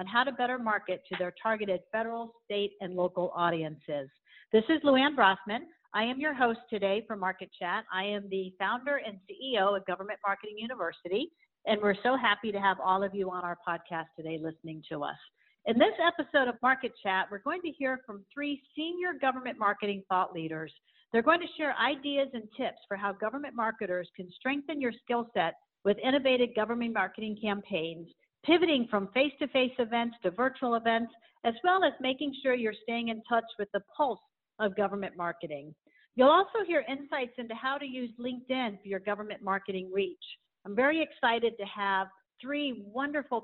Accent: American